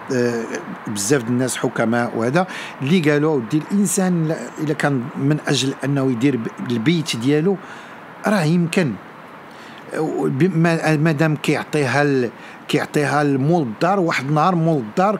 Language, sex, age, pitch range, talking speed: Arabic, male, 50-69, 140-190 Hz, 105 wpm